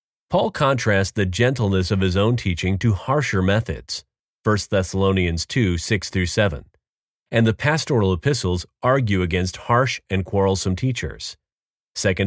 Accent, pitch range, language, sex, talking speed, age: American, 95-115 Hz, English, male, 125 wpm, 40-59